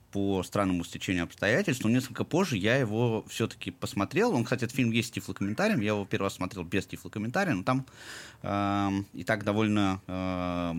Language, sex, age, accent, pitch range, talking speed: Russian, male, 20-39, native, 100-125 Hz, 180 wpm